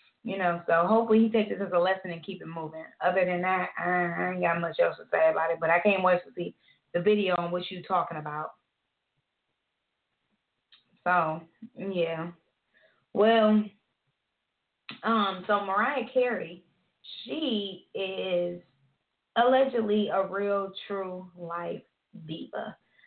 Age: 20-39